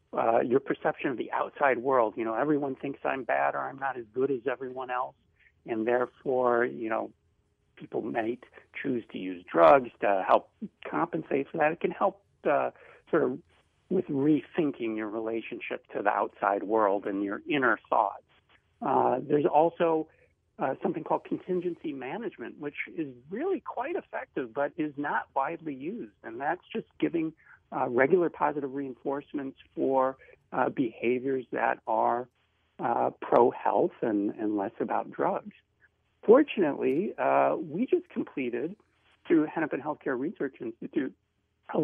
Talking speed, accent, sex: 150 wpm, American, male